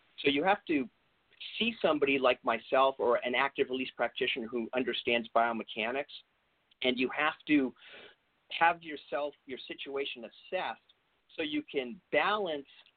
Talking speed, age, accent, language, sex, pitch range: 135 wpm, 40-59, American, English, male, 125-200 Hz